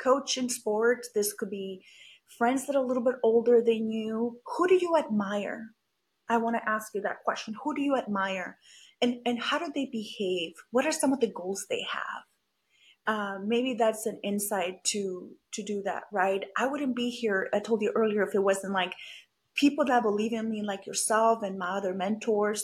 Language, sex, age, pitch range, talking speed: English, female, 30-49, 205-255 Hz, 205 wpm